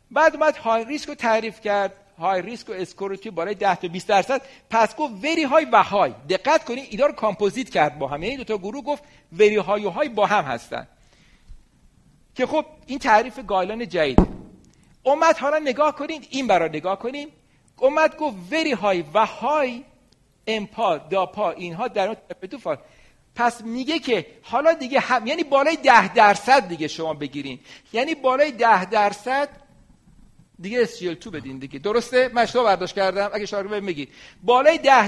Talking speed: 165 wpm